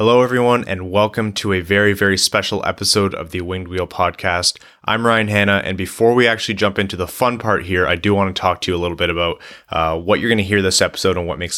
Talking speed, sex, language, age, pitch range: 260 wpm, male, English, 20-39, 90-105 Hz